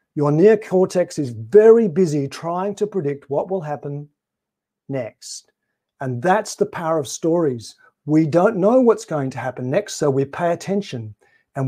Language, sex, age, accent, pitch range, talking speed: English, male, 50-69, Australian, 135-180 Hz, 160 wpm